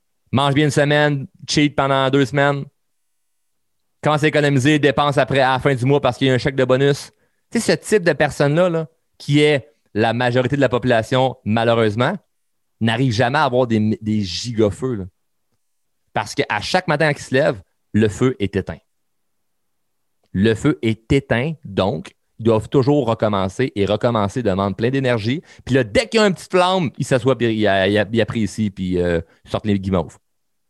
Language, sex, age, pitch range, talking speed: French, male, 30-49, 105-145 Hz, 180 wpm